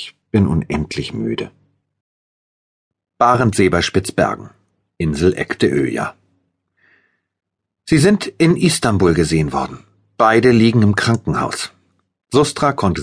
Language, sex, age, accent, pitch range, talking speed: German, male, 40-59, German, 90-115 Hz, 95 wpm